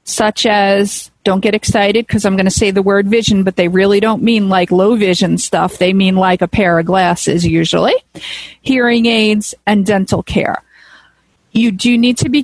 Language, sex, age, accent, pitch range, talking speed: English, female, 40-59, American, 190-230 Hz, 195 wpm